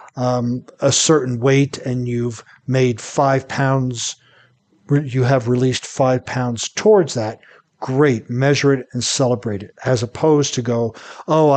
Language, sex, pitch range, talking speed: English, male, 120-140 Hz, 145 wpm